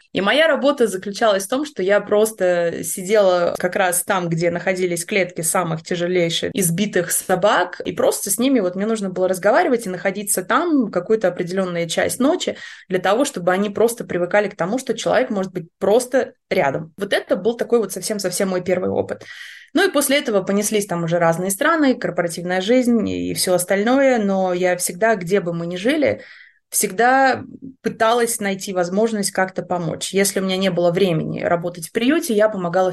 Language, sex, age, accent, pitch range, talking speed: Russian, female, 20-39, native, 180-230 Hz, 180 wpm